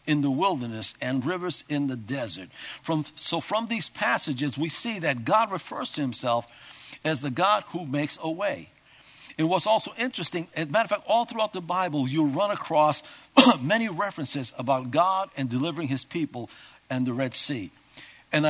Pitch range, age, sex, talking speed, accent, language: 140-180 Hz, 60-79, male, 180 wpm, American, English